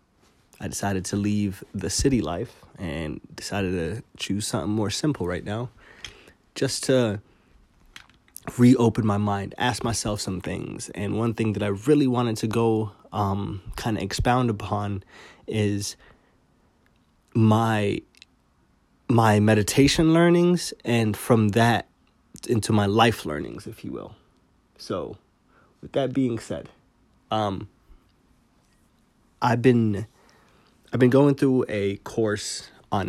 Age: 20-39